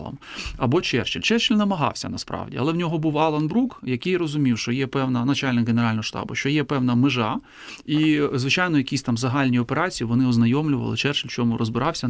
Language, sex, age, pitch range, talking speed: Ukrainian, male, 30-49, 120-155 Hz, 175 wpm